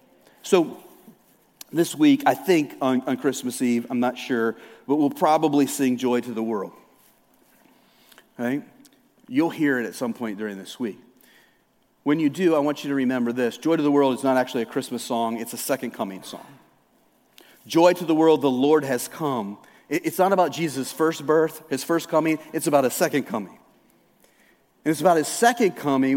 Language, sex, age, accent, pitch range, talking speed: English, male, 40-59, American, 145-220 Hz, 190 wpm